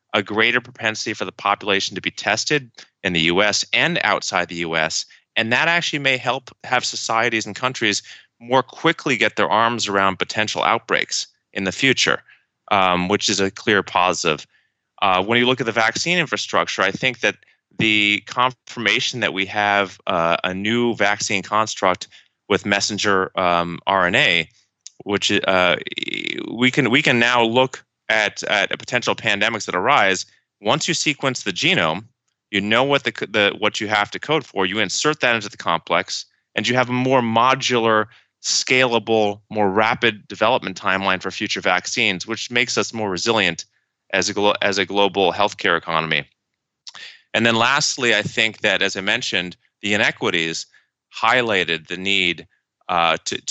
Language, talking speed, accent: English, 165 wpm, American